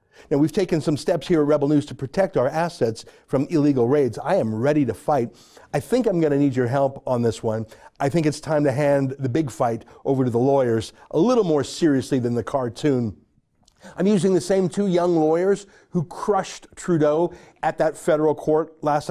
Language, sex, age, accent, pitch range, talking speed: English, male, 50-69, American, 125-170 Hz, 210 wpm